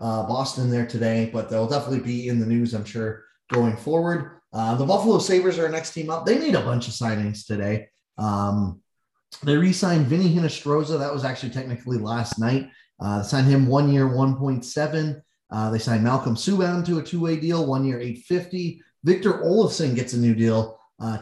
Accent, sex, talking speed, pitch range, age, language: American, male, 190 wpm, 115-170 Hz, 30-49, English